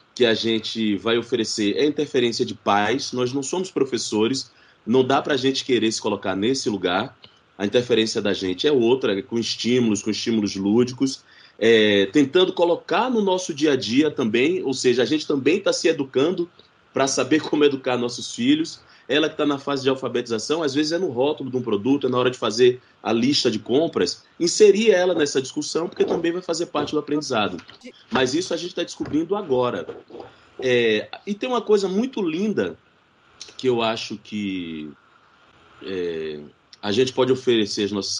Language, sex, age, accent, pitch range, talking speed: Portuguese, male, 20-39, Brazilian, 110-175 Hz, 180 wpm